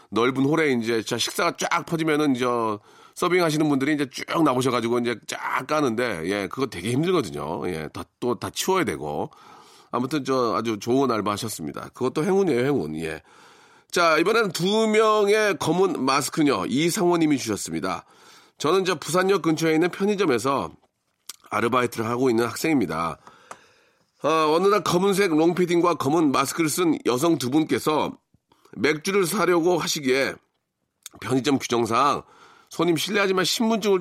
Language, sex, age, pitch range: Korean, male, 40-59, 130-205 Hz